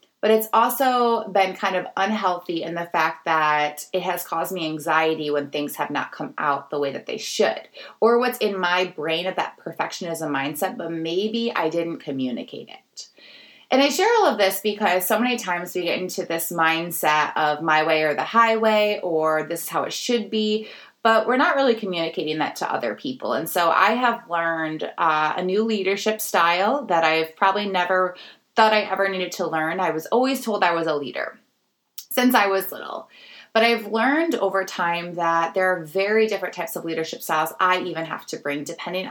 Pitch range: 160-215 Hz